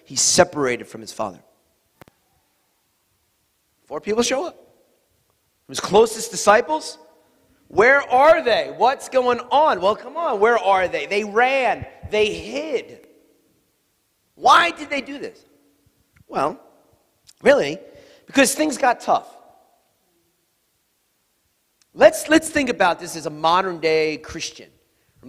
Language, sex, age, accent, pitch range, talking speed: English, male, 40-59, American, 185-285 Hz, 115 wpm